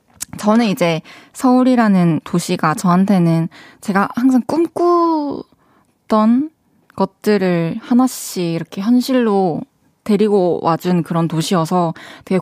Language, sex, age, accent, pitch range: Korean, female, 20-39, native, 175-250 Hz